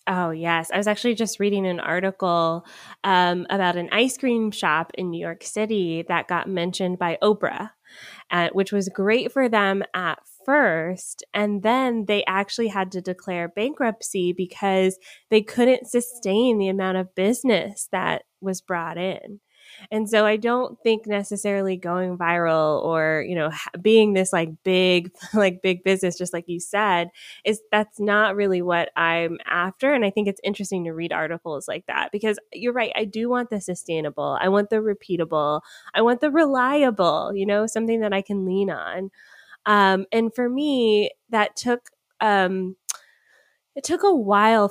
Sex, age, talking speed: female, 20-39, 170 wpm